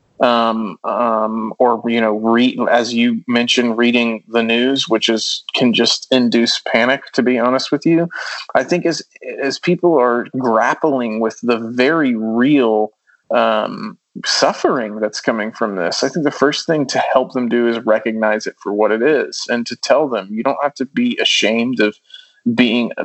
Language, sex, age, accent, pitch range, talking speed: English, male, 30-49, American, 115-130 Hz, 175 wpm